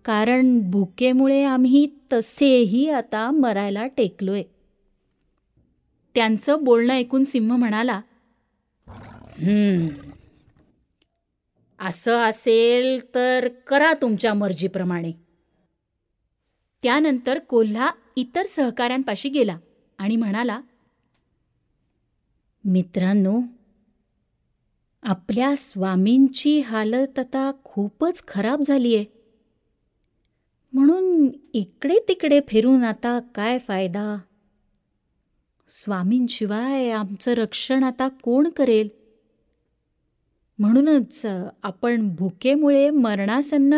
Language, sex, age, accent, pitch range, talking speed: Marathi, female, 30-49, native, 200-260 Hz, 70 wpm